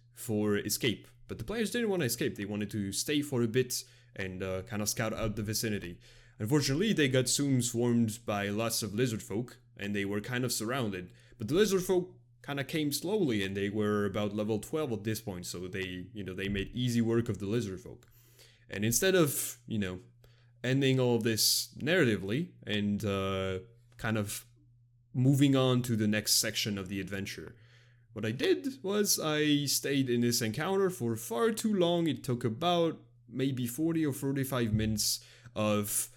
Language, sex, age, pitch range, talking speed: English, male, 20-39, 105-130 Hz, 185 wpm